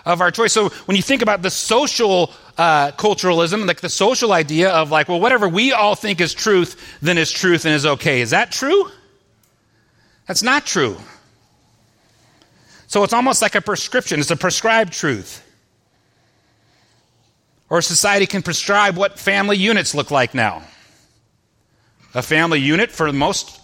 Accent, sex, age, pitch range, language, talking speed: American, male, 40-59, 140-200 Hz, English, 155 wpm